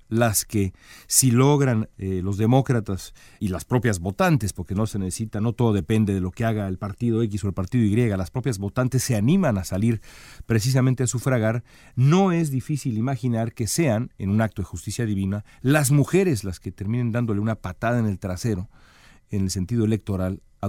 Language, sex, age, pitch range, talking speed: Spanish, male, 40-59, 100-130 Hz, 195 wpm